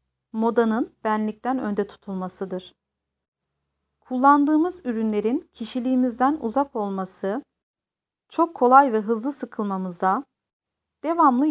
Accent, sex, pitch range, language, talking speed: native, female, 205-260 Hz, Turkish, 80 wpm